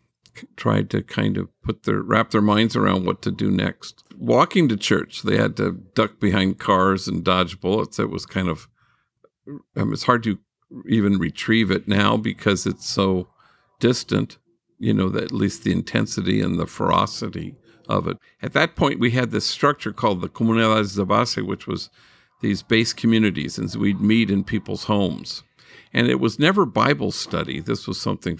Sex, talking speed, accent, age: male, 180 wpm, American, 50-69